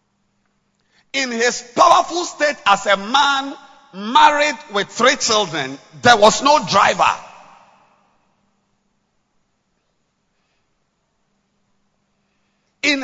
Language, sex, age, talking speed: English, male, 50-69, 75 wpm